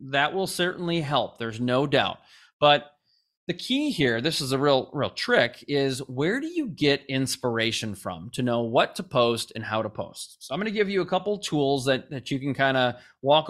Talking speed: 220 wpm